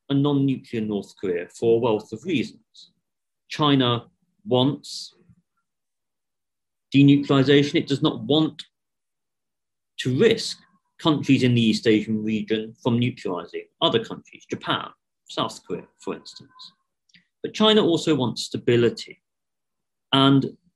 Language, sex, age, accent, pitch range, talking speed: English, male, 40-59, British, 115-170 Hz, 110 wpm